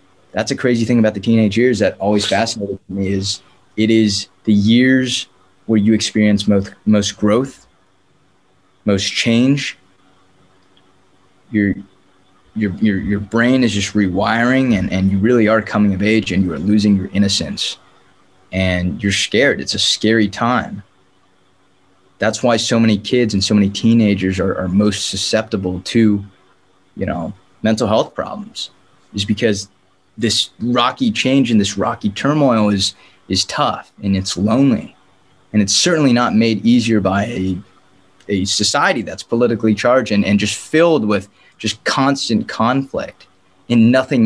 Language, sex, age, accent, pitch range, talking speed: English, male, 20-39, American, 95-110 Hz, 150 wpm